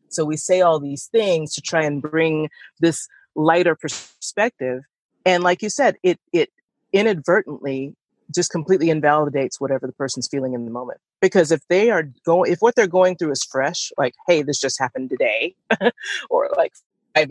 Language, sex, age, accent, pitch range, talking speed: English, female, 30-49, American, 150-200 Hz, 175 wpm